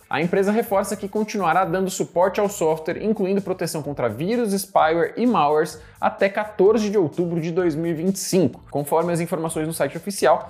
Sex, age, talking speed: male, 20-39, 160 wpm